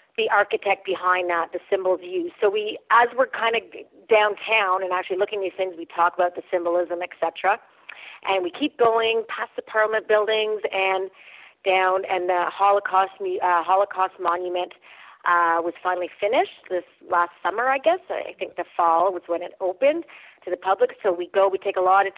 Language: English